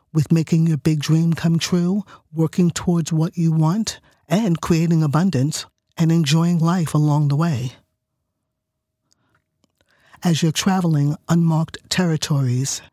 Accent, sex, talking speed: American, male, 120 wpm